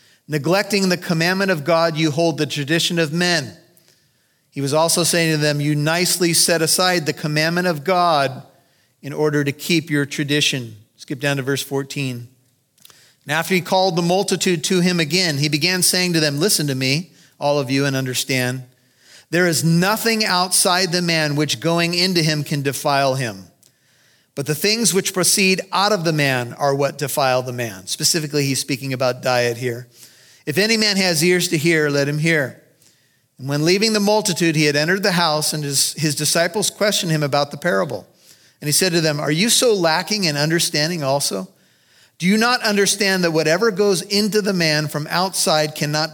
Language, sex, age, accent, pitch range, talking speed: English, male, 40-59, American, 145-180 Hz, 190 wpm